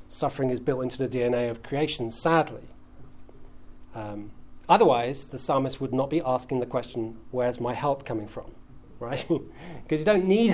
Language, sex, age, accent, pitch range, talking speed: English, male, 40-59, British, 130-185 Hz, 165 wpm